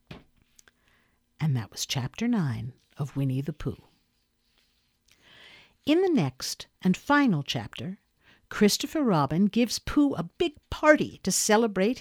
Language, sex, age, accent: English, female, 50-69, American